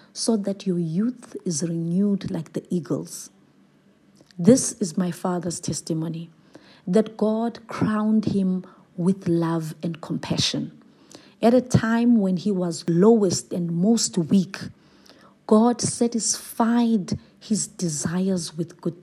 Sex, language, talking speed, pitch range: female, English, 120 wpm, 180-225 Hz